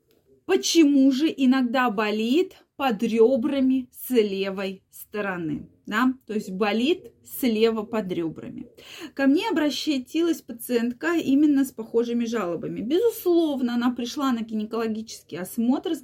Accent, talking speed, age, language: native, 115 wpm, 20-39, Russian